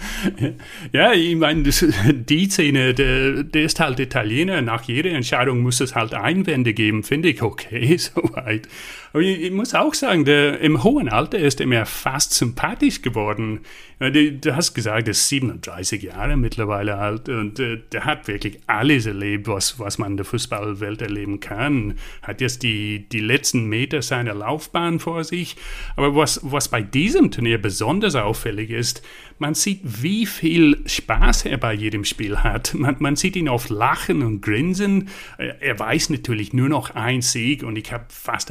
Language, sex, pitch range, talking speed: German, male, 110-145 Hz, 165 wpm